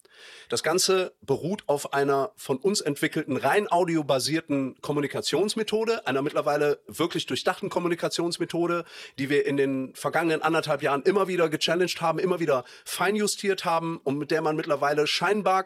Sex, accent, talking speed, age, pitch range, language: male, German, 140 wpm, 40-59, 150-190 Hz, German